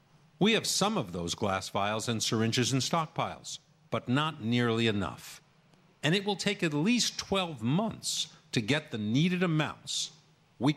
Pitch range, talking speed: 115-165 Hz, 160 wpm